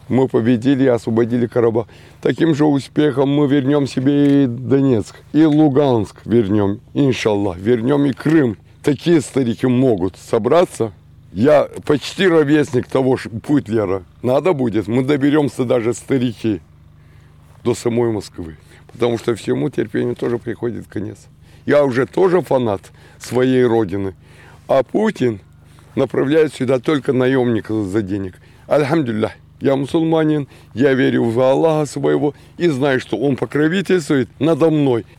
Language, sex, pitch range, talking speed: Ukrainian, male, 115-145 Hz, 130 wpm